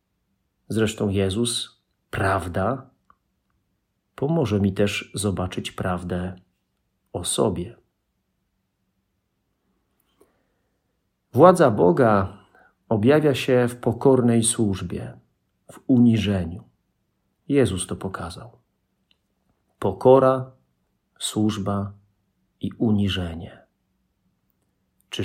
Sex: male